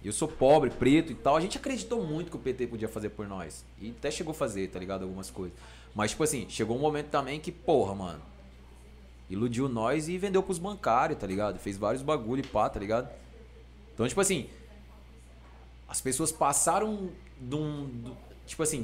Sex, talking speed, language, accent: male, 195 wpm, Portuguese, Brazilian